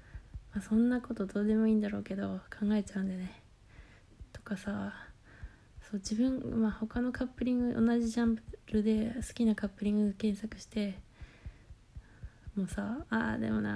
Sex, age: female, 20-39